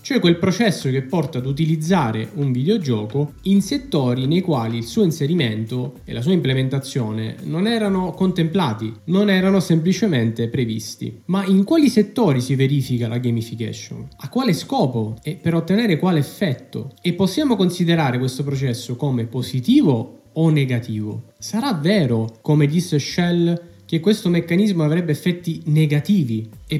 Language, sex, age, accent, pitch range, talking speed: Italian, male, 20-39, native, 125-175 Hz, 145 wpm